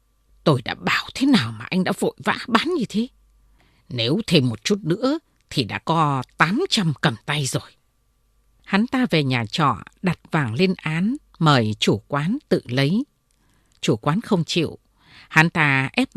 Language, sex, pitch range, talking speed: Vietnamese, female, 140-205 Hz, 170 wpm